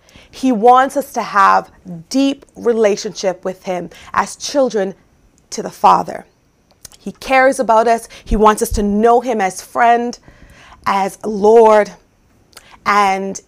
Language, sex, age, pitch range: English, female, 30-49, 195-240 Hz